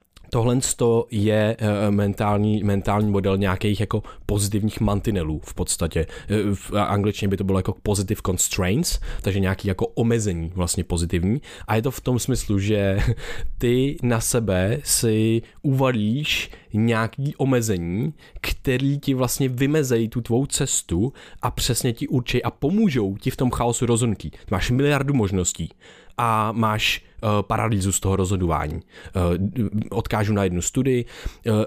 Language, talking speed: Czech, 140 wpm